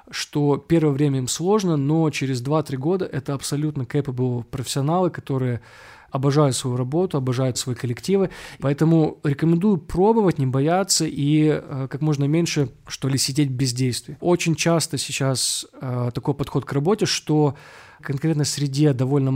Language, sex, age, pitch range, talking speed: Russian, male, 20-39, 135-160 Hz, 145 wpm